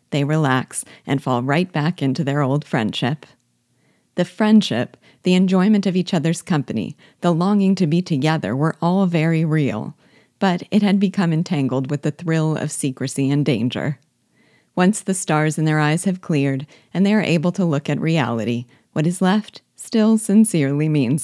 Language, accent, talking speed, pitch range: English, American, 170 wpm, 140-180 Hz